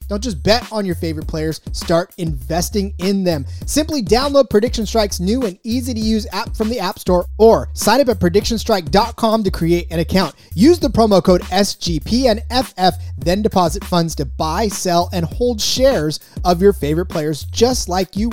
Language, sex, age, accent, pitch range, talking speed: English, male, 30-49, American, 155-210 Hz, 180 wpm